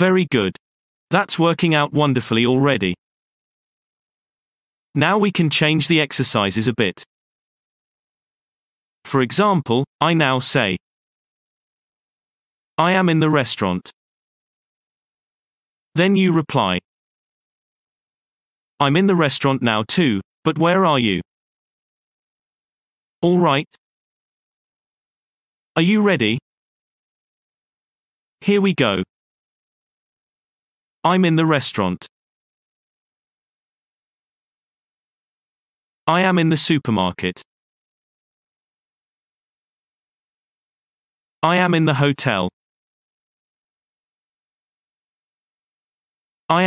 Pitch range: 125-170 Hz